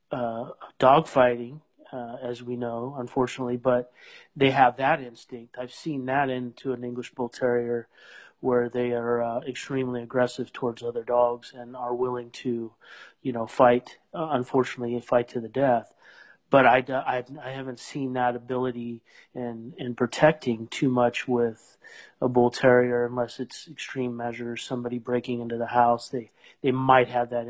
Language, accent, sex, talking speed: English, American, male, 160 wpm